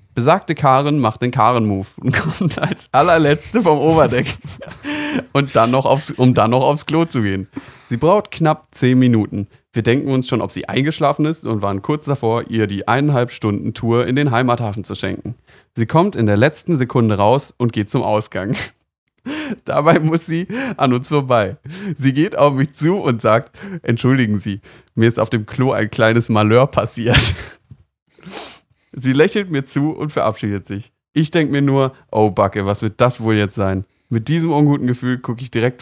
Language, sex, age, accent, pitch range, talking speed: German, male, 30-49, German, 115-155 Hz, 185 wpm